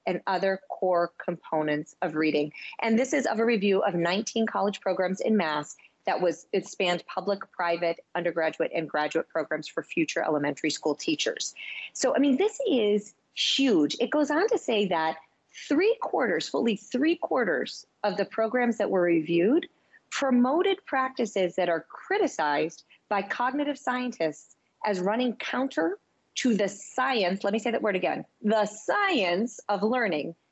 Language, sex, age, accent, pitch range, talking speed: English, female, 40-59, American, 175-245 Hz, 155 wpm